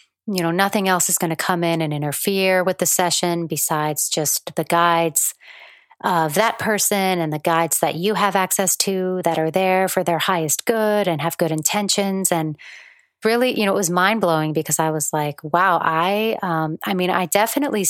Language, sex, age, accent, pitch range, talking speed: English, female, 30-49, American, 165-195 Hz, 200 wpm